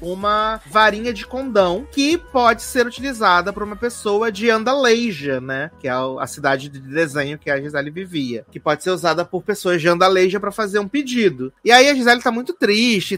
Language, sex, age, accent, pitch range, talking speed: Portuguese, male, 30-49, Brazilian, 165-235 Hz, 195 wpm